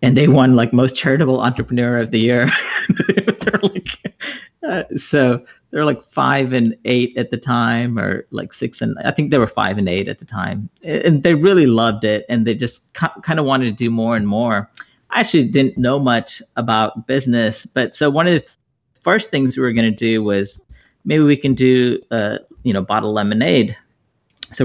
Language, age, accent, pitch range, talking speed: English, 40-59, American, 105-135 Hz, 190 wpm